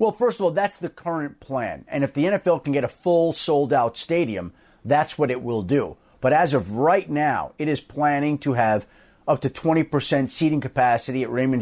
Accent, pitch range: American, 130-160 Hz